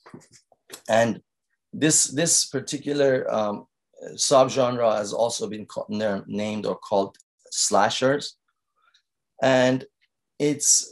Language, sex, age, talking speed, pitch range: English, male, 30-49, 90 wpm, 110-145 Hz